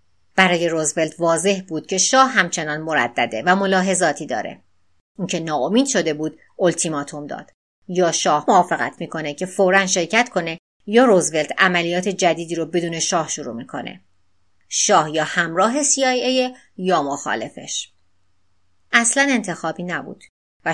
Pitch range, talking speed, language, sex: 155-200 Hz, 125 wpm, Persian, female